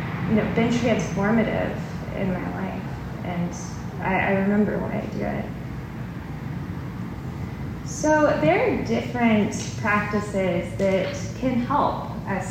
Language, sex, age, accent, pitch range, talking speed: English, female, 10-29, American, 180-225 Hz, 115 wpm